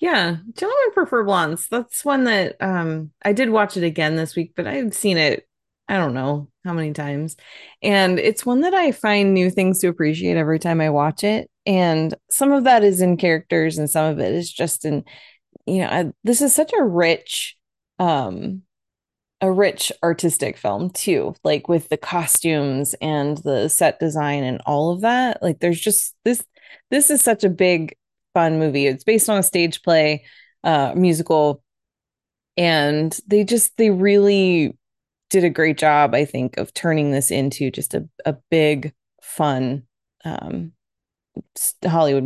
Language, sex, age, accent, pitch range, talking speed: English, female, 20-39, American, 150-200 Hz, 165 wpm